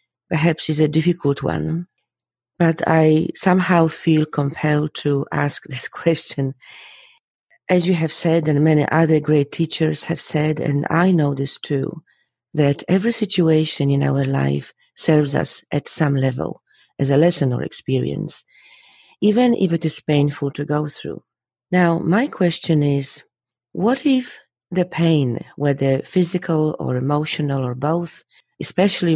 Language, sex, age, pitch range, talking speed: English, female, 40-59, 145-170 Hz, 140 wpm